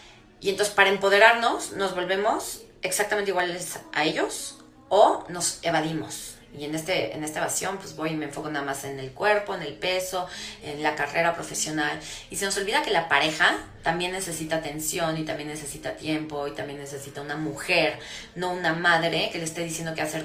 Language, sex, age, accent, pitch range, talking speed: Spanish, female, 30-49, Mexican, 150-180 Hz, 190 wpm